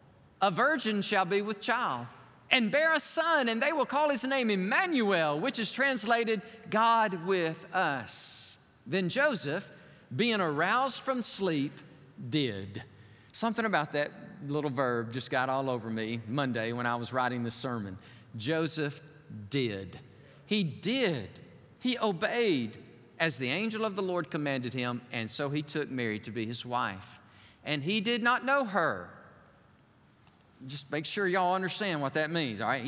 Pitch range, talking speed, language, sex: 130-210 Hz, 155 wpm, English, male